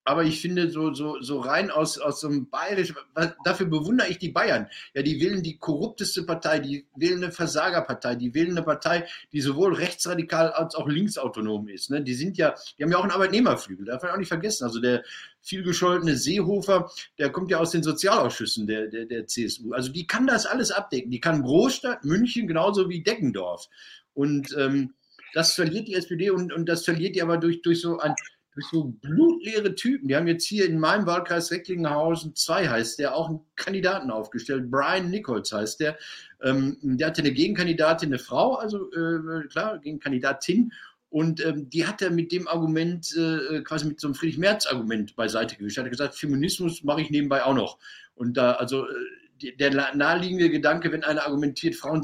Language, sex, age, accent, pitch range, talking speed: German, male, 50-69, German, 140-175 Hz, 190 wpm